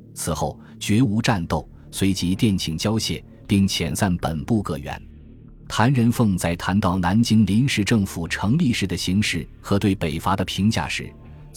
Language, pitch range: Chinese, 90-115 Hz